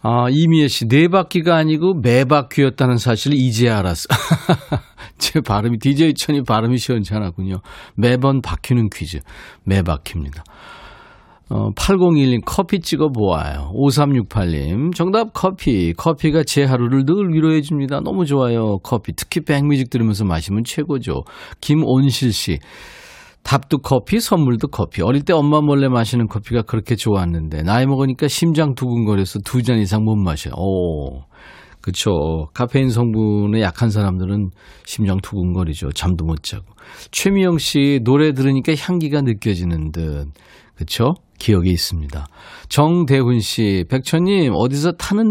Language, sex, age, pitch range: Korean, male, 40-59, 95-150 Hz